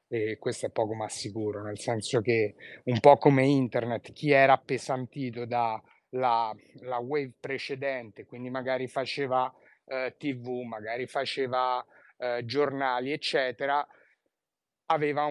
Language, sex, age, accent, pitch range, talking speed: Italian, male, 30-49, native, 125-145 Hz, 120 wpm